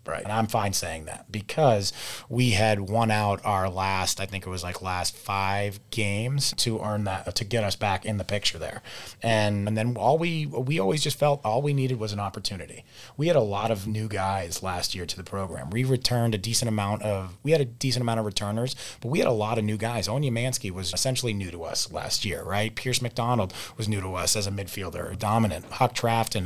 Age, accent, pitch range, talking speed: 30-49, American, 100-115 Hz, 230 wpm